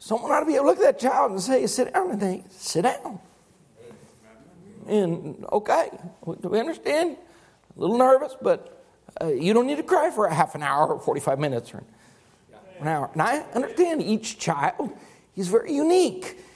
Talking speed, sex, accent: 190 wpm, male, American